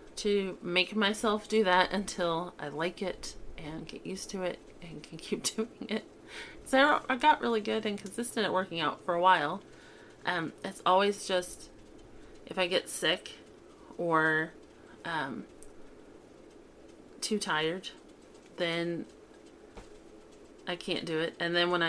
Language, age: English, 30-49